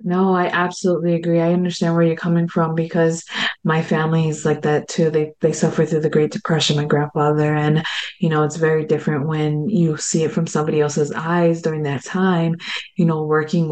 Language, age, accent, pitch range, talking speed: English, 20-39, American, 155-185 Hz, 200 wpm